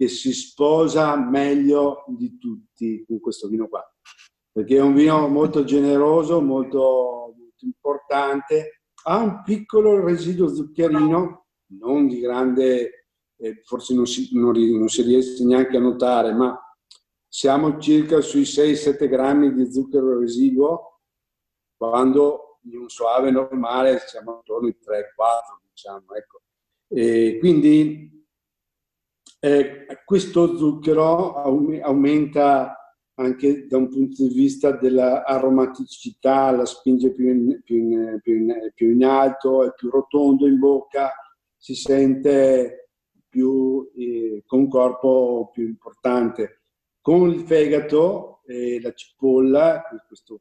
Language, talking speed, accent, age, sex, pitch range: English, 115 wpm, Italian, 50-69, male, 125-150 Hz